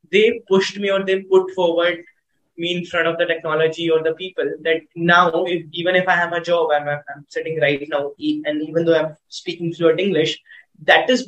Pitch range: 155-185 Hz